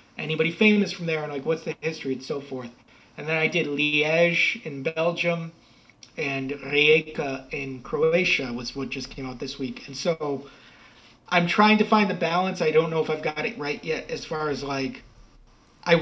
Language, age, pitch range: English, 30-49, 140-170 Hz